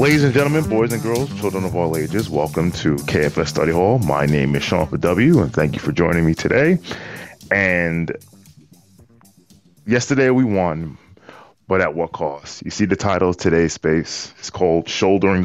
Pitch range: 80-105 Hz